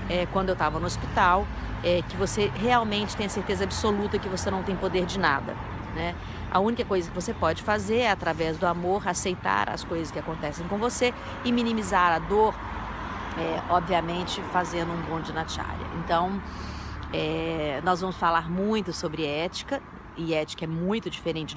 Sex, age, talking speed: female, 40-59, 180 wpm